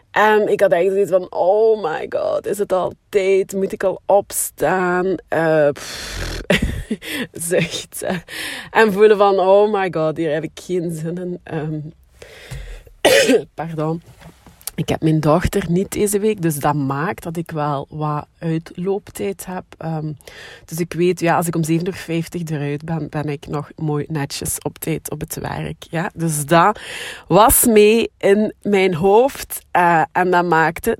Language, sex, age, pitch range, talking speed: Dutch, female, 30-49, 160-200 Hz, 155 wpm